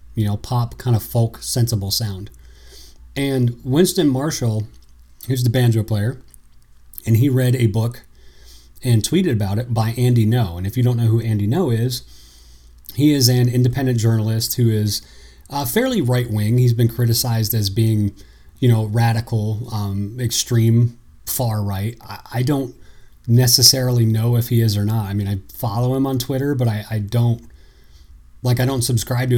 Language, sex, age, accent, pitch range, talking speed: English, male, 30-49, American, 100-125 Hz, 175 wpm